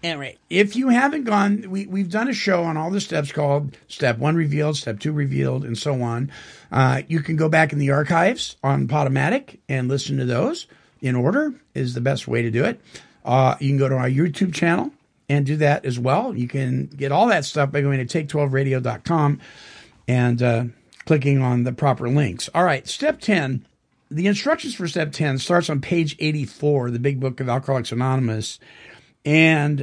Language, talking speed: English, 195 wpm